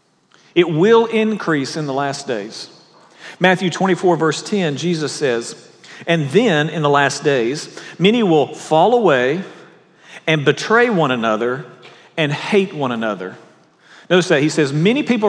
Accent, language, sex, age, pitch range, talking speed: American, English, male, 50-69, 145-190 Hz, 145 wpm